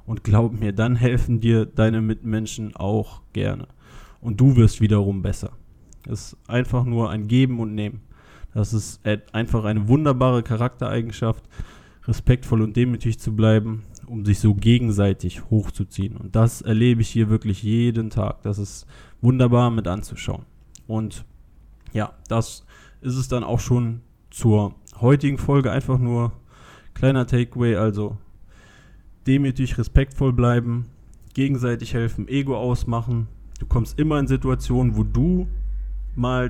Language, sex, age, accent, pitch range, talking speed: German, male, 20-39, German, 105-125 Hz, 135 wpm